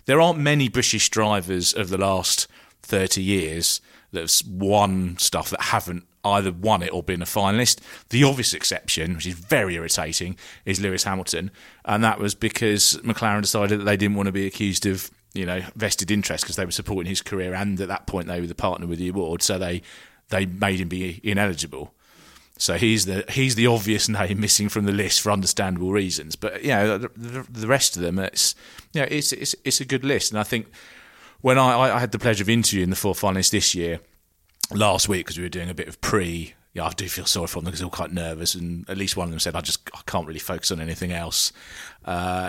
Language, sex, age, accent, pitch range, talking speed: English, male, 30-49, British, 85-105 Hz, 225 wpm